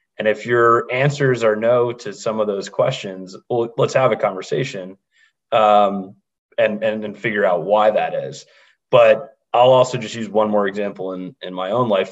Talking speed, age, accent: 195 wpm, 30-49, American